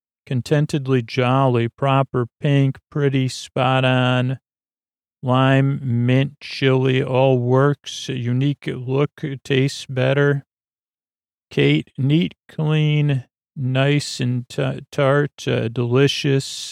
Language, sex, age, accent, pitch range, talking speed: English, male, 40-59, American, 120-140 Hz, 85 wpm